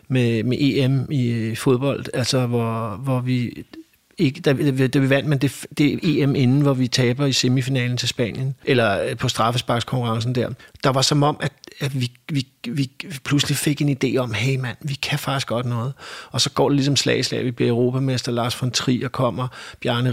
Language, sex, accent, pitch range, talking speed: Danish, male, native, 120-140 Hz, 200 wpm